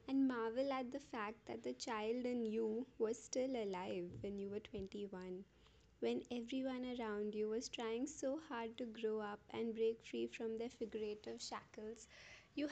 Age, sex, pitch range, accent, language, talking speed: 20-39, female, 220-265 Hz, Indian, English, 170 wpm